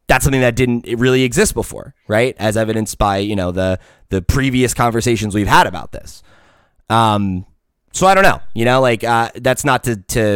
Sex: male